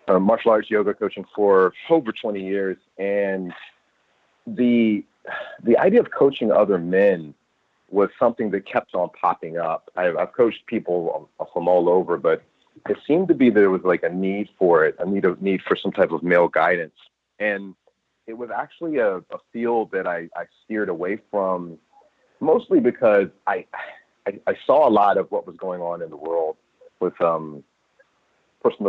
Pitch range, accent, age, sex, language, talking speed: 85-120 Hz, American, 40-59, male, English, 175 wpm